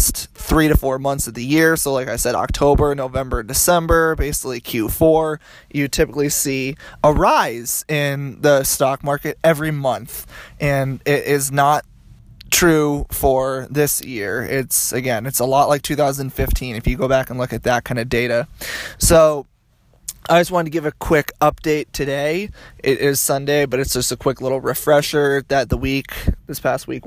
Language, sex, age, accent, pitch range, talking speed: English, male, 20-39, American, 125-145 Hz, 175 wpm